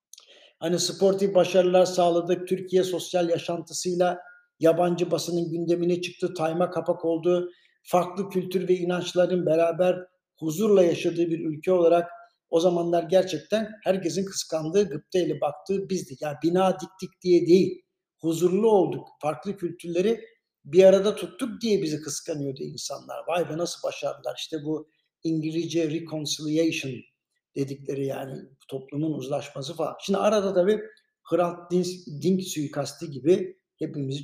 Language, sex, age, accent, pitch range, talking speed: Turkish, male, 60-79, native, 155-185 Hz, 125 wpm